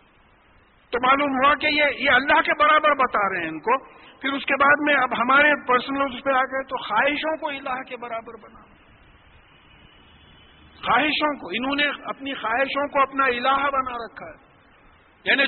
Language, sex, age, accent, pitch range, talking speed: English, male, 50-69, Indian, 205-275 Hz, 170 wpm